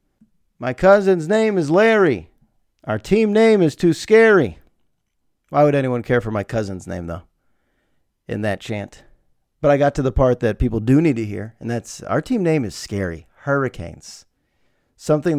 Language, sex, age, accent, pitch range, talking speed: English, male, 40-59, American, 115-180 Hz, 170 wpm